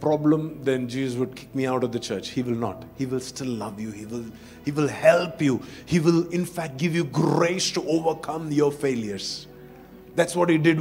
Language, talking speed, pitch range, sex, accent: English, 215 wpm, 125-195 Hz, male, Indian